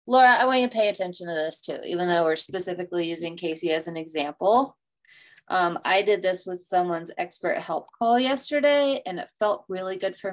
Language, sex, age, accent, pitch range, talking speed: English, female, 20-39, American, 165-205 Hz, 205 wpm